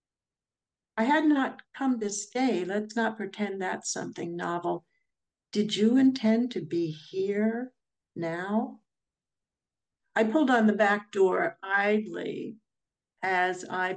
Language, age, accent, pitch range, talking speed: English, 60-79, American, 185-215 Hz, 120 wpm